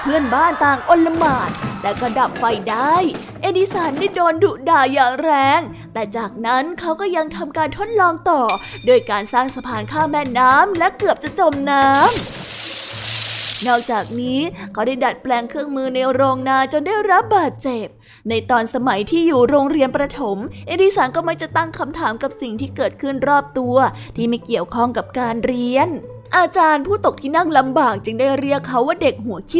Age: 20-39